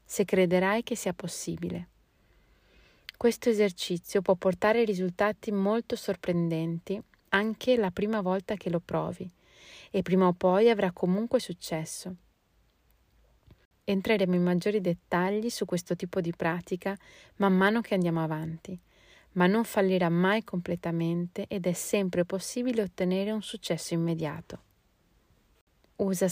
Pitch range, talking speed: 175-210 Hz, 125 wpm